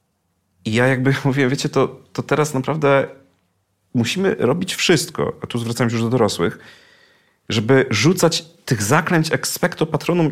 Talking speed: 145 wpm